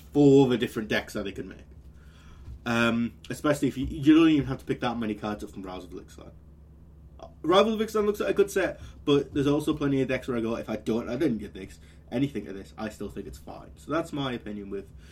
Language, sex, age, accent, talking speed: English, male, 20-39, British, 260 wpm